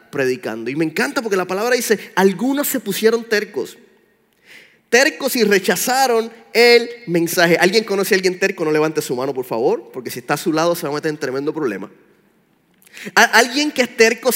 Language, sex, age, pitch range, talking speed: Spanish, male, 30-49, 185-255 Hz, 185 wpm